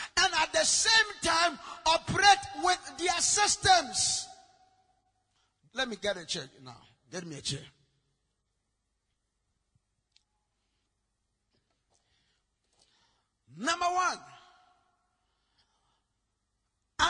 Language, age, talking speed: English, 50-69, 70 wpm